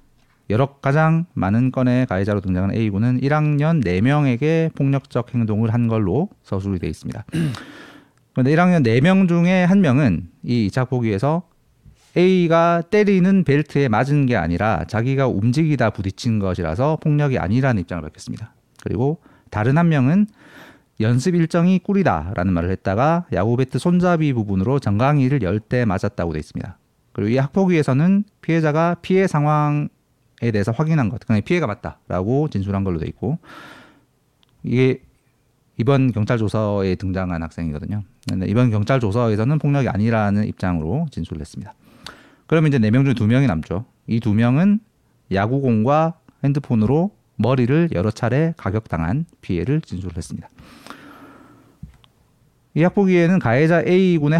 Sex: male